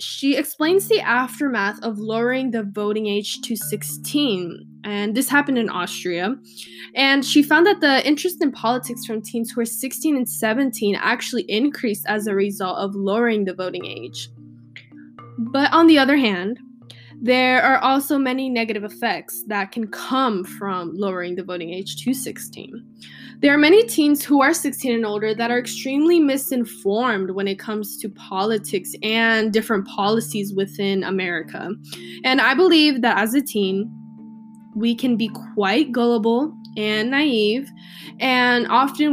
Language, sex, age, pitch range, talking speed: English, female, 10-29, 200-260 Hz, 155 wpm